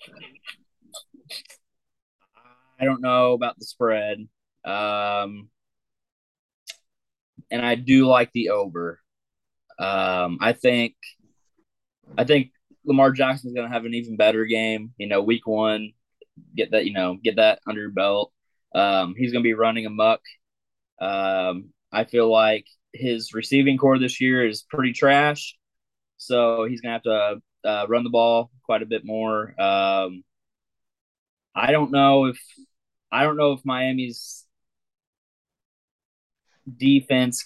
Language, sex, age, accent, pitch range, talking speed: English, male, 20-39, American, 110-125 Hz, 135 wpm